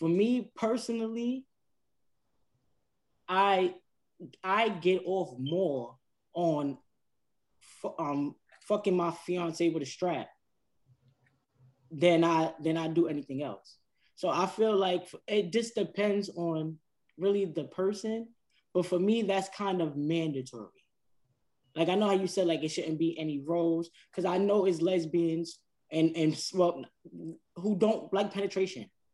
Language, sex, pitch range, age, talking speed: English, male, 160-200 Hz, 10-29, 135 wpm